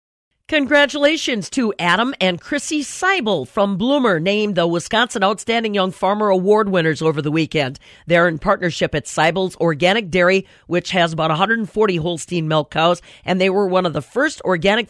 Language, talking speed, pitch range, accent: English, 165 wpm, 170-210 Hz, American